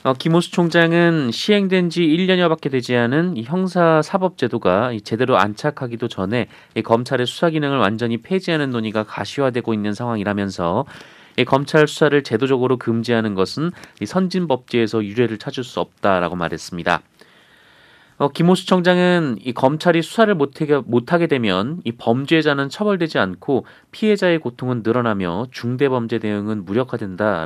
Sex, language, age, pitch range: male, Korean, 30-49, 105-155 Hz